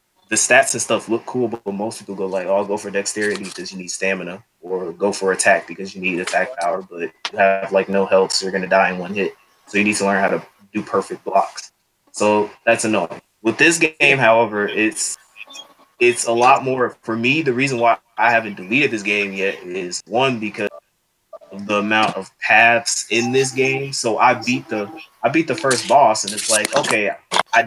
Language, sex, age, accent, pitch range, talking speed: English, male, 20-39, American, 100-130 Hz, 215 wpm